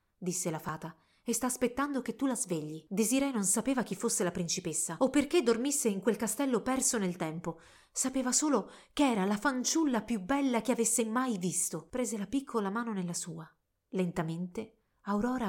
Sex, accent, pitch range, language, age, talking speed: female, native, 180-245 Hz, Italian, 30-49, 180 wpm